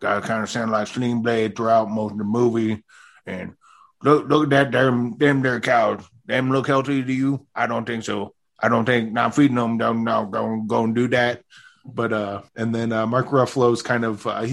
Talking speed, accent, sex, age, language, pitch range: 225 wpm, American, male, 20-39, English, 105-125 Hz